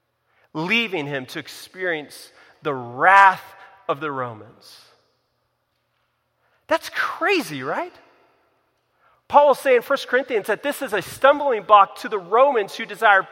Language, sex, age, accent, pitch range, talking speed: English, male, 40-59, American, 185-285 Hz, 130 wpm